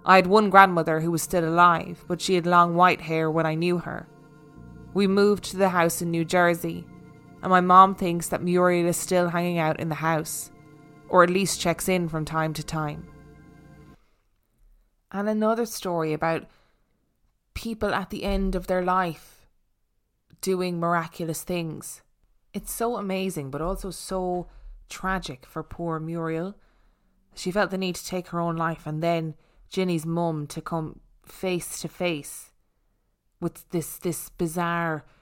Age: 20-39